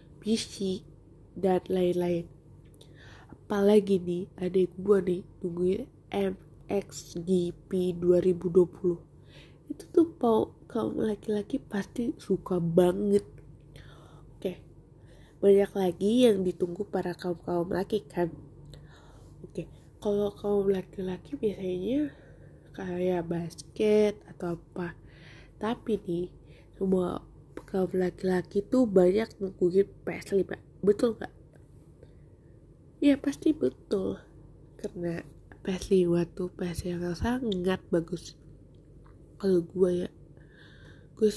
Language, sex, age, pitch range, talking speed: Indonesian, female, 20-39, 175-200 Hz, 95 wpm